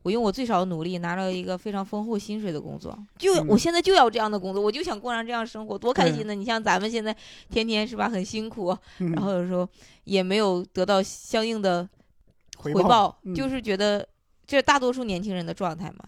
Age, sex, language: 20-39, female, Chinese